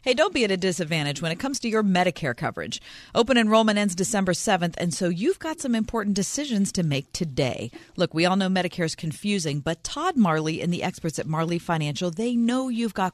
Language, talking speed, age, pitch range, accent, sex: English, 220 wpm, 40-59, 165-220 Hz, American, female